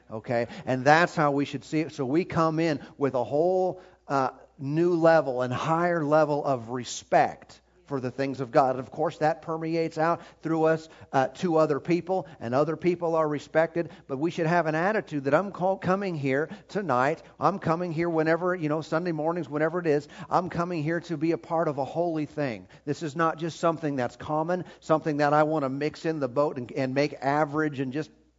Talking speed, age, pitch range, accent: 210 wpm, 40-59, 140-170 Hz, American